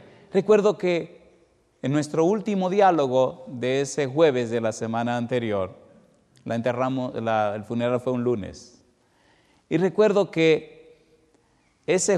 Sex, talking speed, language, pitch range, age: male, 125 wpm, Spanish, 105-135 Hz, 50-69